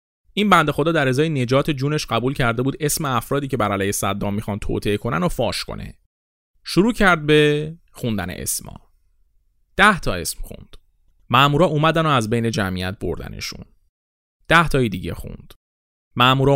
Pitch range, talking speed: 95-135 Hz, 165 wpm